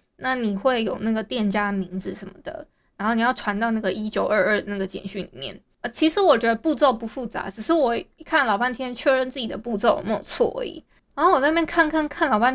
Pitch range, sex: 215-290 Hz, female